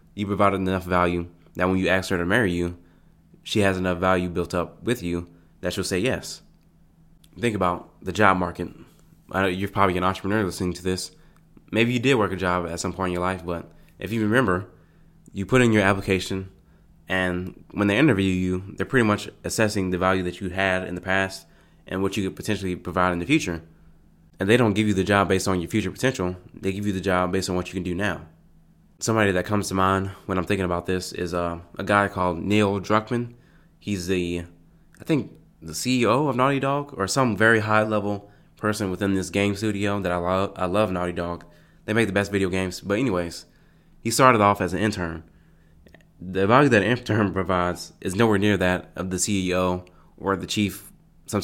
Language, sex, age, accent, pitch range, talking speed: English, male, 20-39, American, 90-105 Hz, 210 wpm